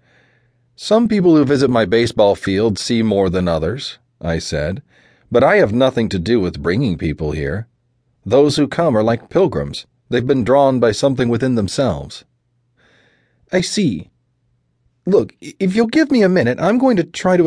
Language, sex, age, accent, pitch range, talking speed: English, male, 40-59, American, 110-160 Hz, 170 wpm